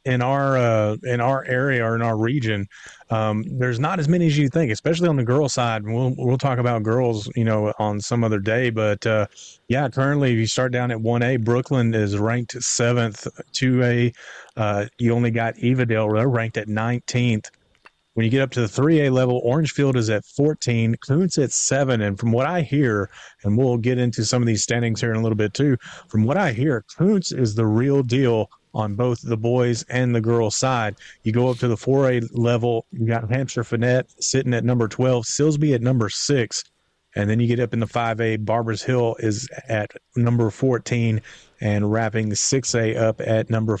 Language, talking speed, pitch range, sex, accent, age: English, 205 wpm, 110-125 Hz, male, American, 30-49